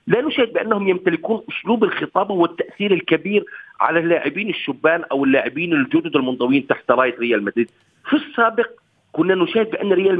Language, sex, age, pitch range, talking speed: Arabic, male, 40-59, 145-220 Hz, 145 wpm